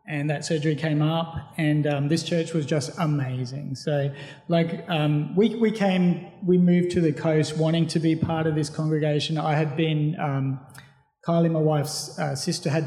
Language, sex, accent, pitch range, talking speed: English, male, Australian, 150-175 Hz, 185 wpm